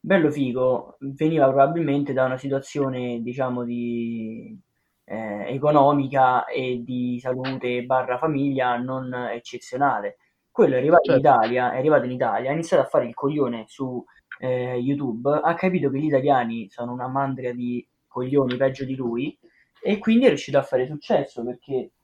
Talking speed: 155 wpm